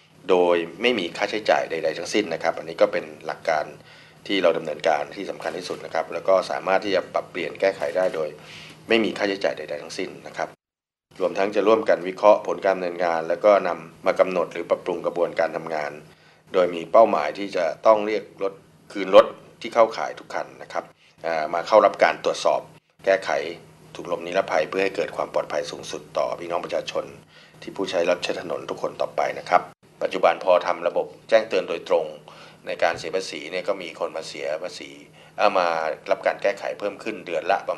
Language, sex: Thai, male